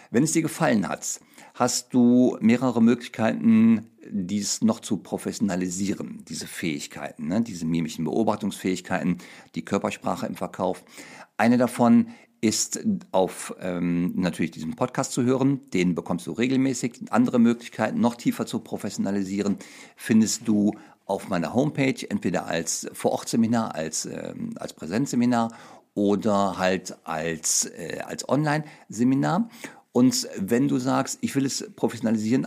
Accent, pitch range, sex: German, 105-140 Hz, male